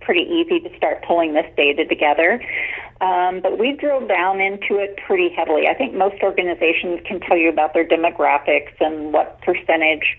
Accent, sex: American, female